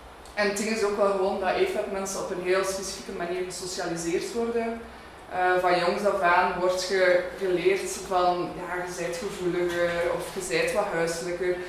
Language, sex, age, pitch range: Dutch, female, 20-39, 180-210 Hz